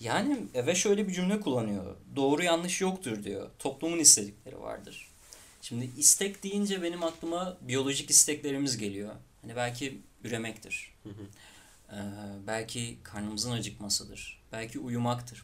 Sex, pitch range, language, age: male, 100-145 Hz, Turkish, 30-49